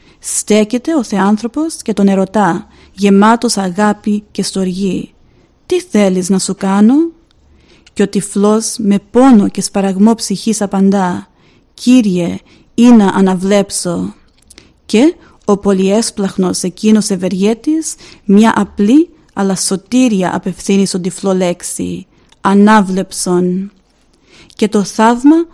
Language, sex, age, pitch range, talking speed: Greek, female, 40-59, 190-230 Hz, 105 wpm